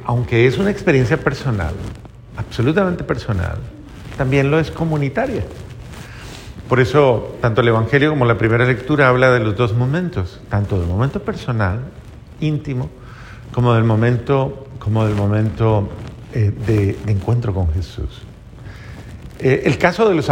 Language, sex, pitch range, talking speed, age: Spanish, male, 115-160 Hz, 135 wpm, 50-69